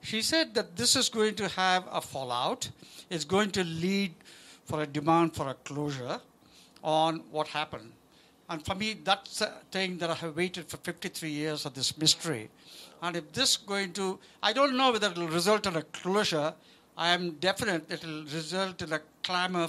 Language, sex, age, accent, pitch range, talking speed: English, male, 60-79, Indian, 160-215 Hz, 190 wpm